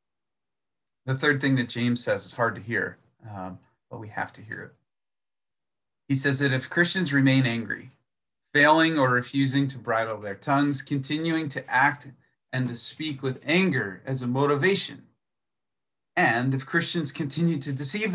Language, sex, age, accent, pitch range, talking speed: English, male, 30-49, American, 120-150 Hz, 160 wpm